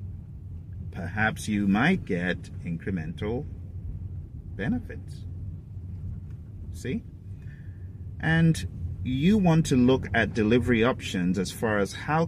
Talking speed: 95 wpm